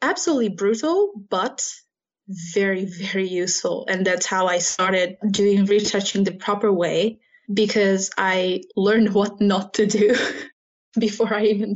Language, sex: English, female